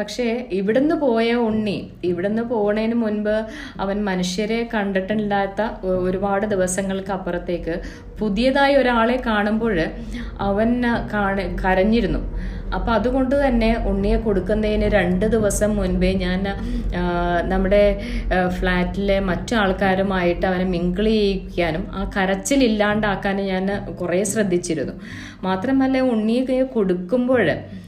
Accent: native